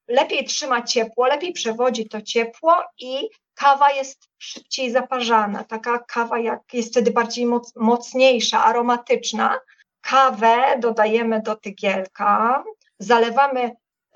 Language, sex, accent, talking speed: Polish, female, native, 100 wpm